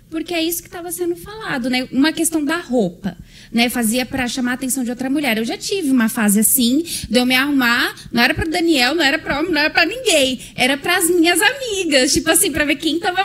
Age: 20-39